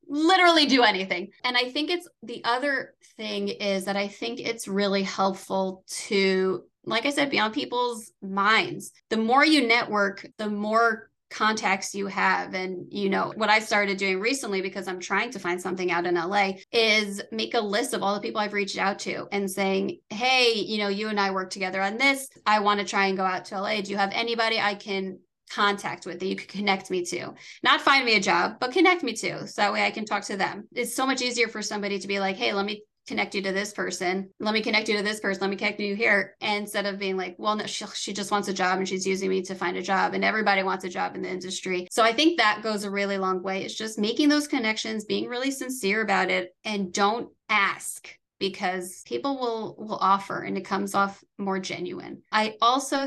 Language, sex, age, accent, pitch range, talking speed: English, female, 20-39, American, 195-220 Hz, 235 wpm